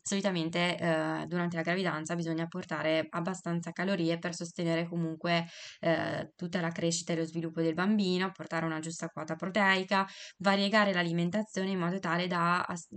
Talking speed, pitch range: 155 wpm, 165-190 Hz